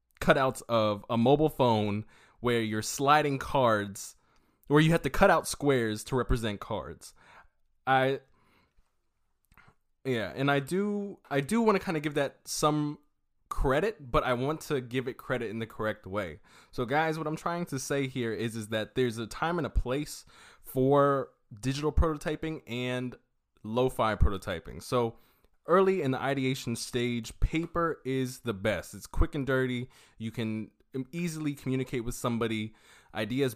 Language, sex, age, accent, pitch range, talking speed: English, male, 20-39, American, 115-140 Hz, 160 wpm